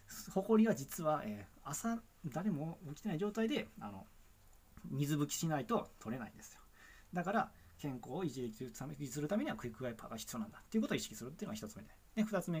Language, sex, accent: Japanese, male, native